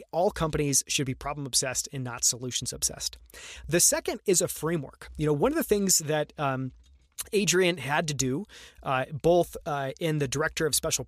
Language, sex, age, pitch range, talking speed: English, male, 30-49, 135-180 Hz, 190 wpm